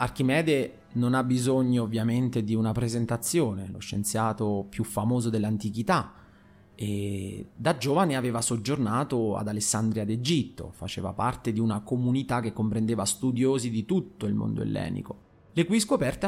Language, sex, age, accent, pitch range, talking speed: Italian, male, 30-49, native, 105-155 Hz, 135 wpm